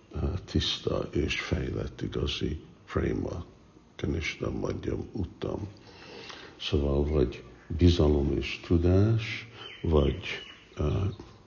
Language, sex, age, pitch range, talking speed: Hungarian, male, 60-79, 70-90 Hz, 85 wpm